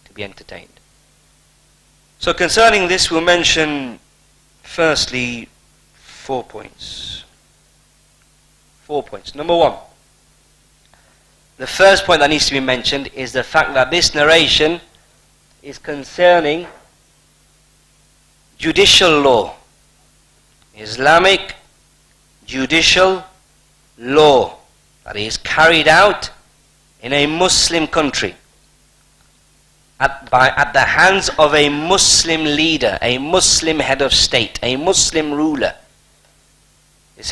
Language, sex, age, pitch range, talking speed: English, male, 40-59, 135-175 Hz, 100 wpm